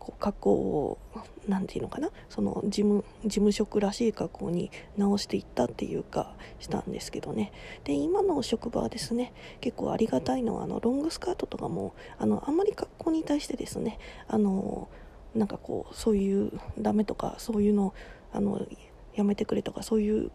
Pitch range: 210-245 Hz